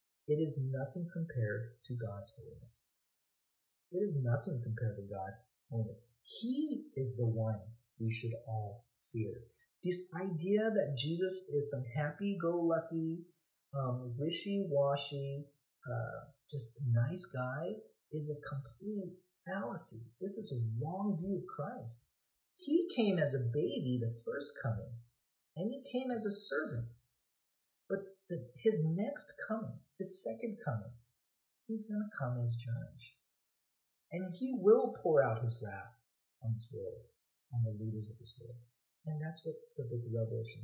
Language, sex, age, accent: English, male, 40-59, American